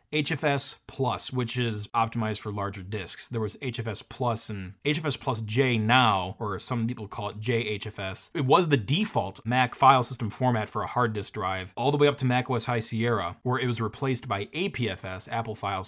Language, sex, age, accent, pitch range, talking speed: English, male, 30-49, American, 110-145 Hz, 195 wpm